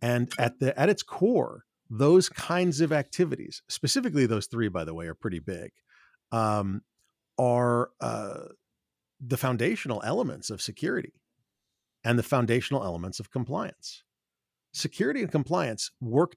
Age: 40-59